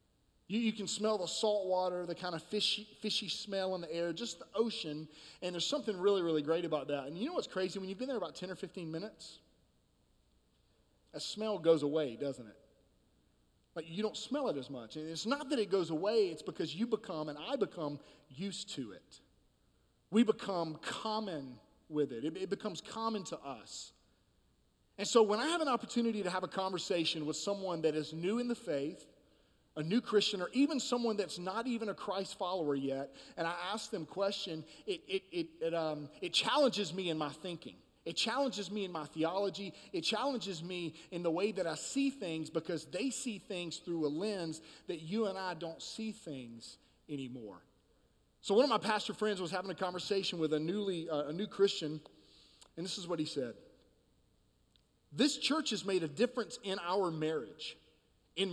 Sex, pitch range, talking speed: male, 155-215 Hz, 200 wpm